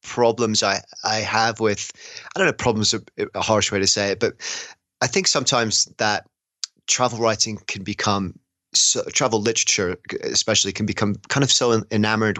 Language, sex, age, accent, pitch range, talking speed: English, male, 30-49, British, 100-115 Hz, 160 wpm